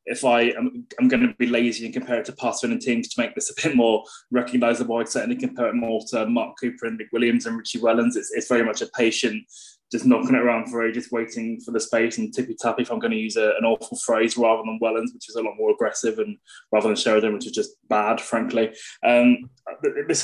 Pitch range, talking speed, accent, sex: 115-145 Hz, 245 wpm, British, male